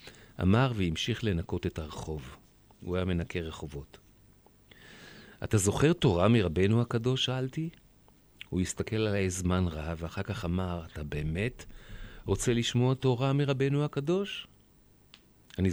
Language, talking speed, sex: Hebrew, 120 wpm, male